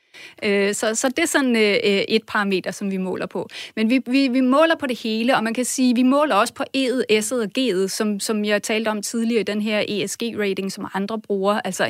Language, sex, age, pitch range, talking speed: Danish, female, 30-49, 210-255 Hz, 230 wpm